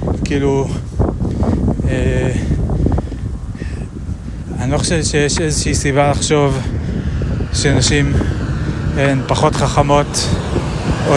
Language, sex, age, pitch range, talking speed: Hebrew, male, 20-39, 110-150 Hz, 75 wpm